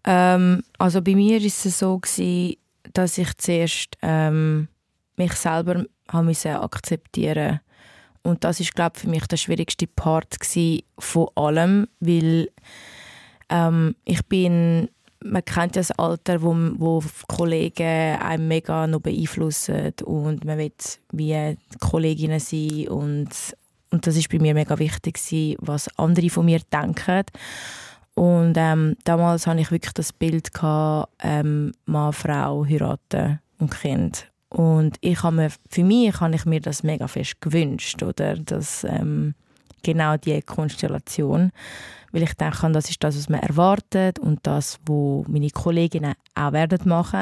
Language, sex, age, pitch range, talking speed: German, female, 20-39, 155-180 Hz, 145 wpm